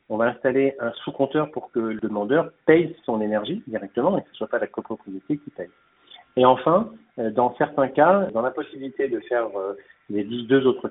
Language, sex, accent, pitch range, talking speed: French, male, French, 120-155 Hz, 195 wpm